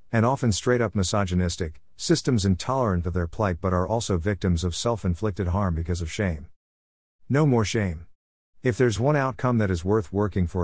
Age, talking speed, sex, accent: 50-69, 175 wpm, male, American